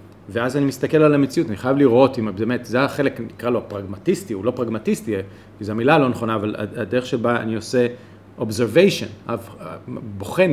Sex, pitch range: male, 110-150 Hz